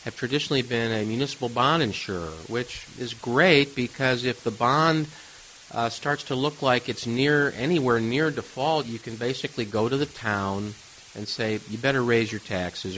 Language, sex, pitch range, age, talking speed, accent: English, male, 105-135 Hz, 50-69, 175 wpm, American